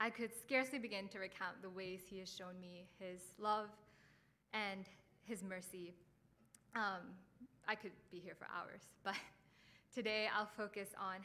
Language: English